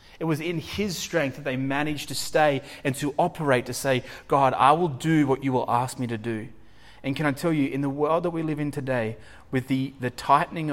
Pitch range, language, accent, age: 120-145 Hz, English, Australian, 30-49